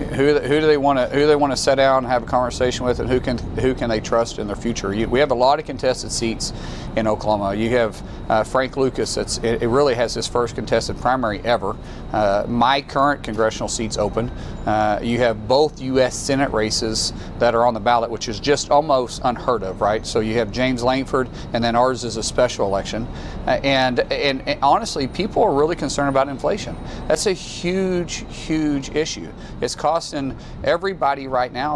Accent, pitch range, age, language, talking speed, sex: American, 115-140 Hz, 40-59, English, 210 wpm, male